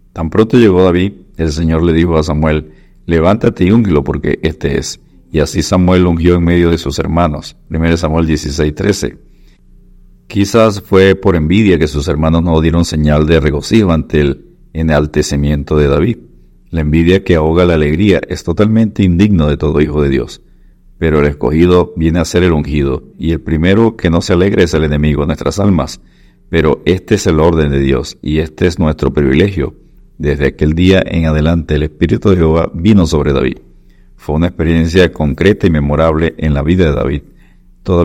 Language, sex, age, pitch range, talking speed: Spanish, male, 50-69, 75-90 Hz, 185 wpm